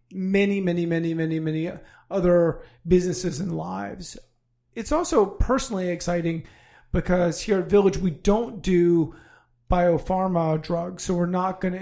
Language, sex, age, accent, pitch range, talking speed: English, male, 40-59, American, 160-185 Hz, 135 wpm